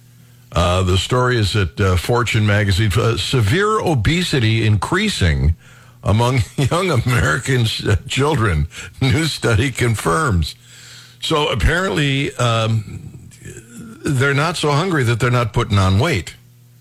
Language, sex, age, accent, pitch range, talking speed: English, male, 60-79, American, 105-140 Hz, 115 wpm